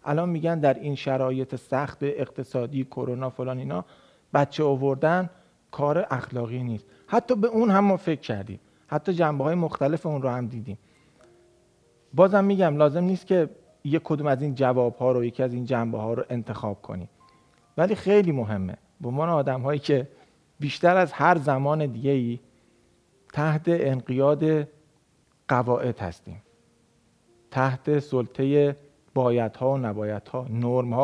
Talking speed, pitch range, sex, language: 130 wpm, 110-150 Hz, male, Persian